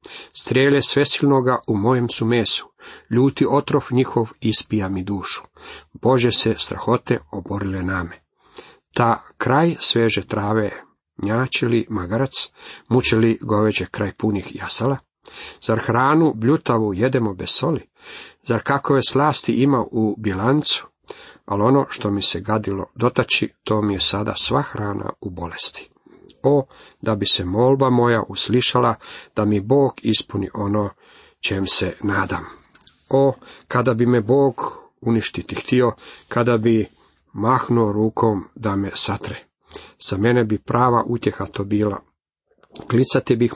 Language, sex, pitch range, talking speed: Croatian, male, 100-125 Hz, 125 wpm